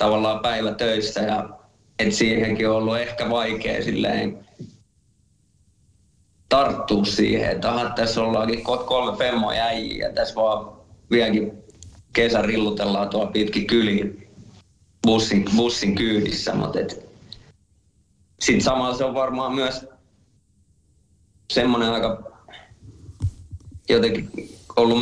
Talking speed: 95 wpm